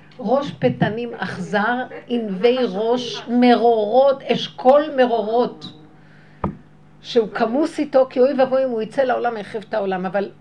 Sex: female